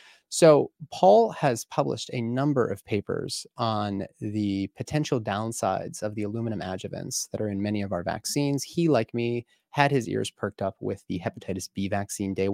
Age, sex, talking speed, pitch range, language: 30-49, male, 175 wpm, 105-140 Hz, English